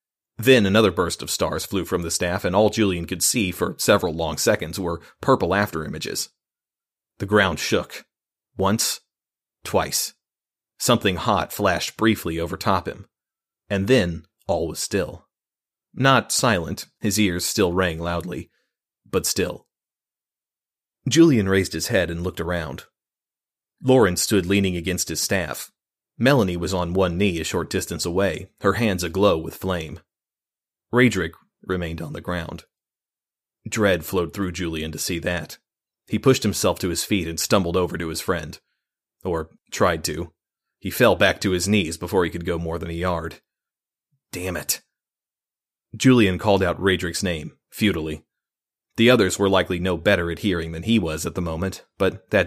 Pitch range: 85-100 Hz